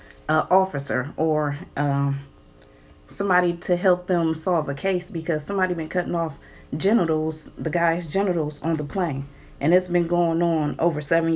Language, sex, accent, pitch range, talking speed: English, female, American, 140-180 Hz, 160 wpm